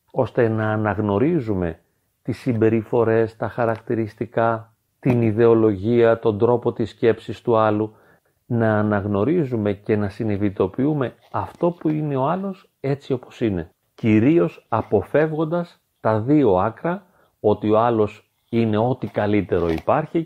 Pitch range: 105-140 Hz